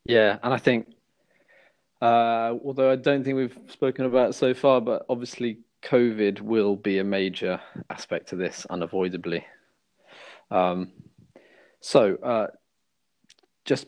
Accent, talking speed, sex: British, 130 wpm, male